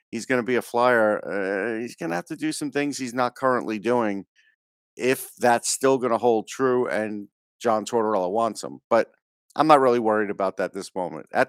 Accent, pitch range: American, 105-125 Hz